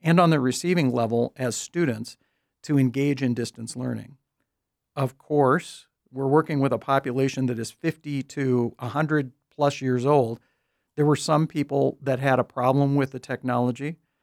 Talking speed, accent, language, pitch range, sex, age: 160 wpm, American, English, 125-150 Hz, male, 50-69